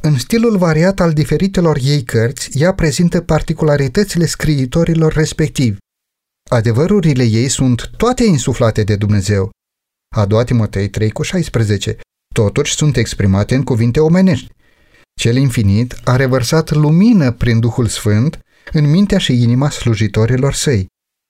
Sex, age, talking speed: male, 30-49, 120 wpm